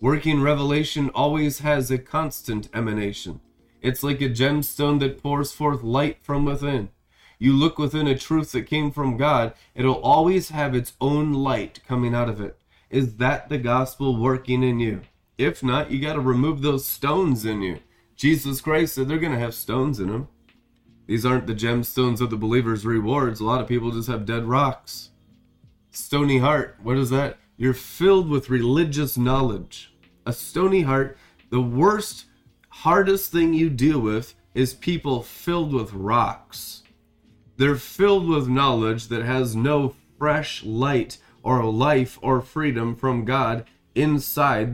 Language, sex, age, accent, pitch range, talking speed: English, male, 20-39, American, 120-145 Hz, 160 wpm